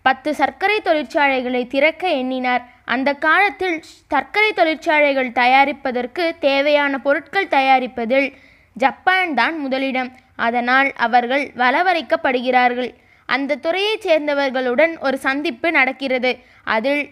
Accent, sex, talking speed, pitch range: native, female, 90 wpm, 255-330 Hz